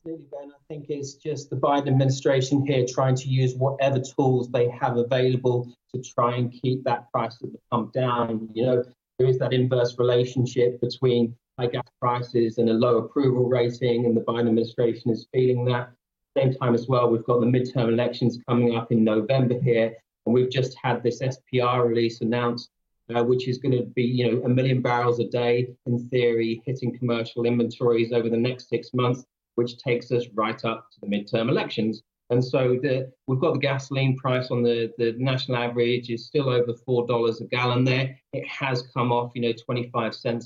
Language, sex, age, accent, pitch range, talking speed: English, male, 30-49, British, 115-125 Hz, 195 wpm